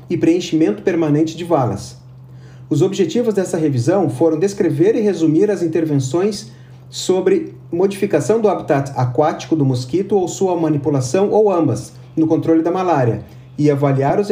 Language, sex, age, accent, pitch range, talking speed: Portuguese, male, 40-59, Brazilian, 130-175 Hz, 145 wpm